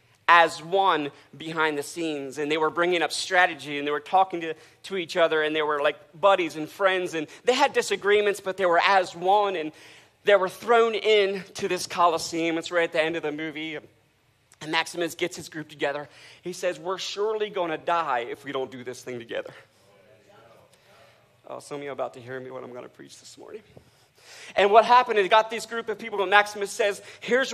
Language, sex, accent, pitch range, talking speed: English, male, American, 155-205 Hz, 220 wpm